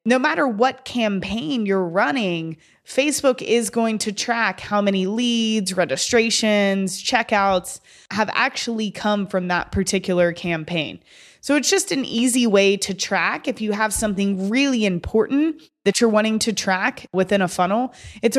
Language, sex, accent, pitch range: English, female, American, 190-245 Hz